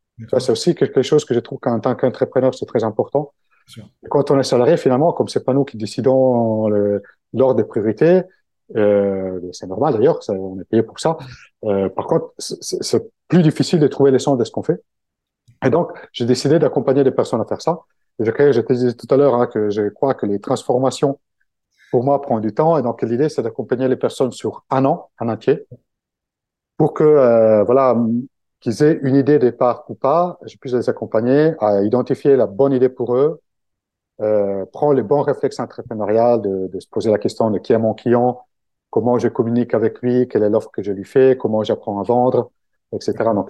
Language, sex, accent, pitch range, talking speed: French, male, French, 110-140 Hz, 210 wpm